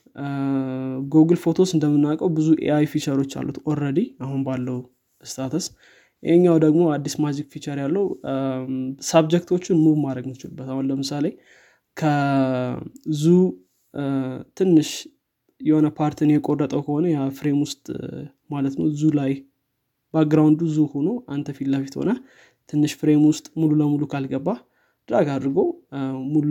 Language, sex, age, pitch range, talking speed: Amharic, male, 20-39, 135-160 Hz, 110 wpm